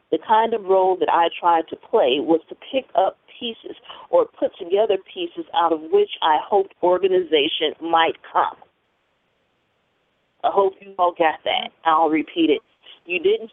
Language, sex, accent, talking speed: English, female, American, 165 wpm